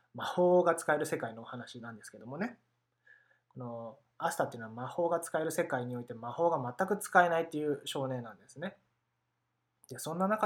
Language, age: Japanese, 20-39